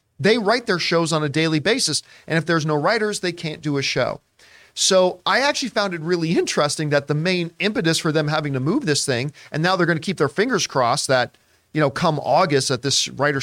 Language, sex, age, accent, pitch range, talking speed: English, male, 40-59, American, 135-195 Hz, 235 wpm